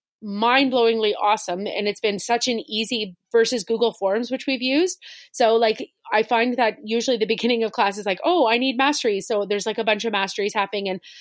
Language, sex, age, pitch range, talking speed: English, female, 30-49, 210-250 Hz, 210 wpm